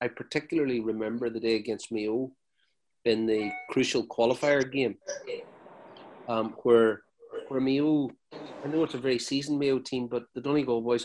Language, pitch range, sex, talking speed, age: English, 115-140 Hz, male, 150 wpm, 30-49